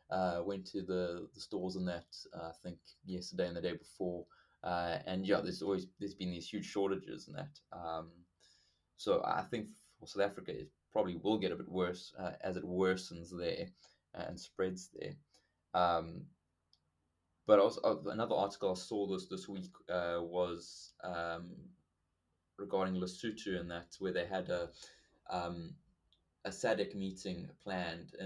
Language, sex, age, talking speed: English, male, 20-39, 160 wpm